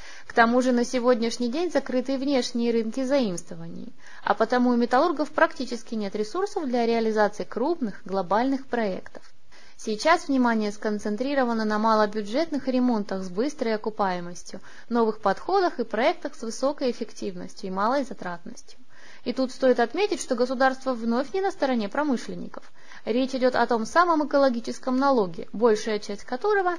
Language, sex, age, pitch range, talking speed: Russian, female, 20-39, 210-280 Hz, 140 wpm